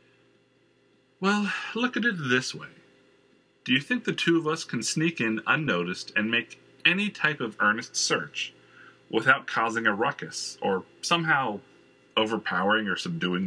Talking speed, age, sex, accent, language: 145 wpm, 40-59, male, American, English